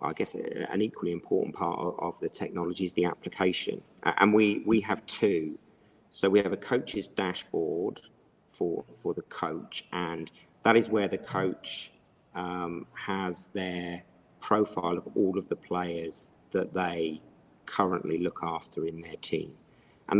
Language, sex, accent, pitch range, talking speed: English, male, British, 85-95 Hz, 150 wpm